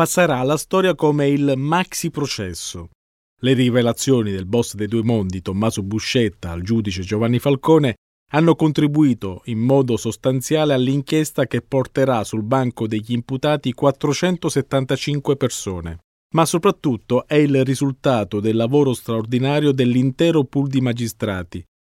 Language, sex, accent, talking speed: Italian, male, native, 125 wpm